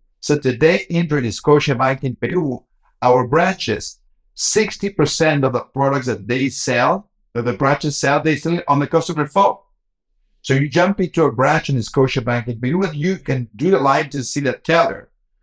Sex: male